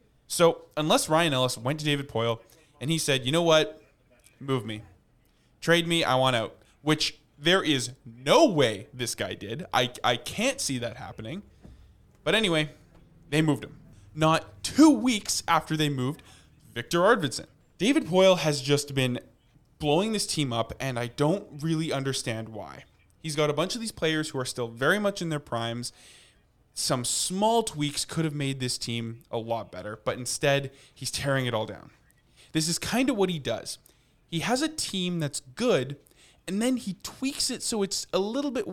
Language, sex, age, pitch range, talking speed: English, male, 20-39, 125-165 Hz, 185 wpm